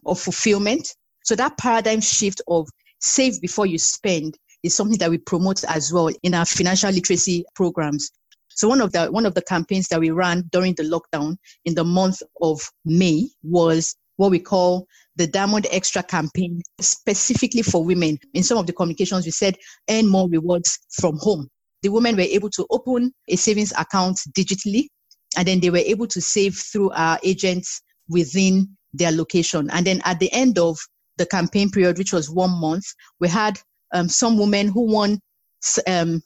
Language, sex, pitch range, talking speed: English, female, 170-200 Hz, 180 wpm